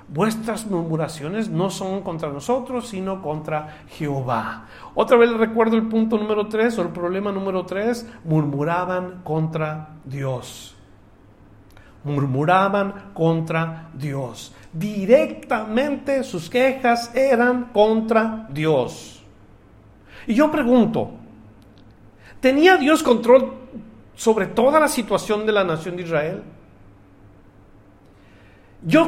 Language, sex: Spanish, male